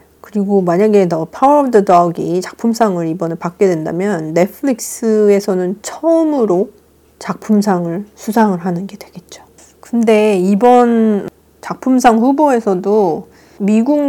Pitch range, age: 180-235 Hz, 40-59